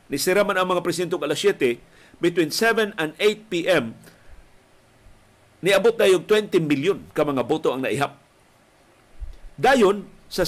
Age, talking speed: 50-69, 135 wpm